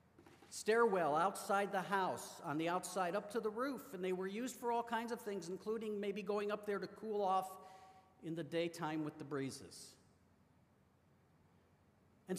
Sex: male